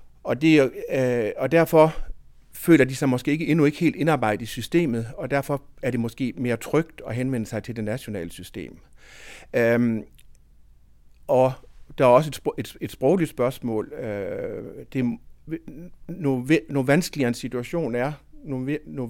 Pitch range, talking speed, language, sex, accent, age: 115-145 Hz, 150 wpm, Danish, male, native, 50-69